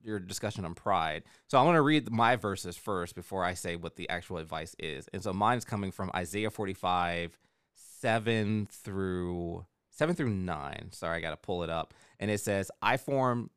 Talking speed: 195 wpm